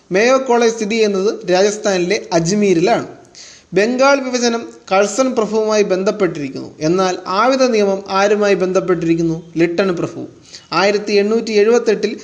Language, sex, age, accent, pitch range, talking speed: Malayalam, male, 30-49, native, 195-235 Hz, 105 wpm